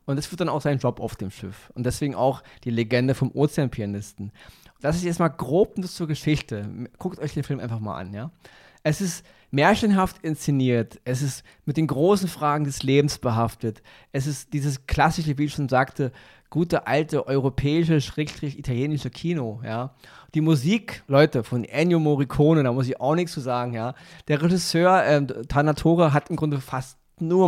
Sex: male